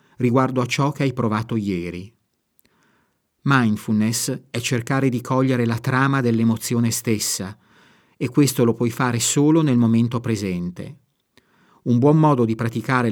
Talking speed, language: 135 wpm, Italian